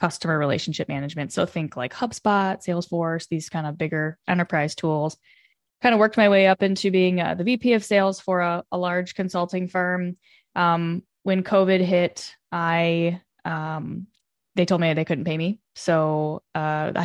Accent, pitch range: American, 165-195 Hz